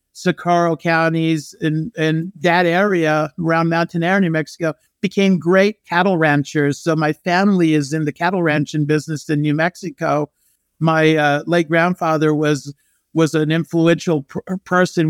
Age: 50-69